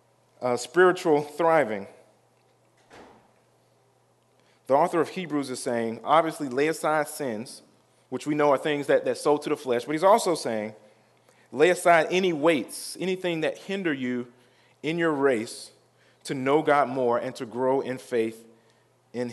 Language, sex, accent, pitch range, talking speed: English, male, American, 130-170 Hz, 150 wpm